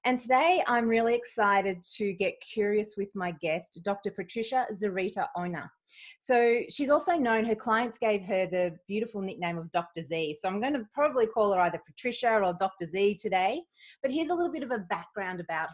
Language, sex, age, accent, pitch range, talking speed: English, female, 30-49, Australian, 185-240 Hz, 190 wpm